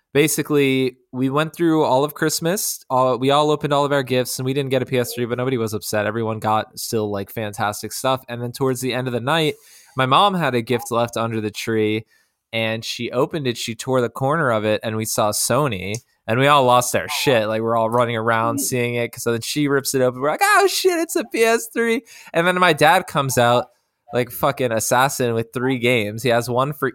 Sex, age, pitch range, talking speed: male, 20-39, 115-145 Hz, 230 wpm